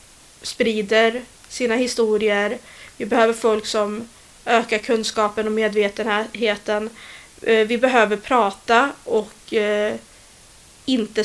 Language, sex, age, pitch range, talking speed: Swedish, female, 30-49, 215-240 Hz, 85 wpm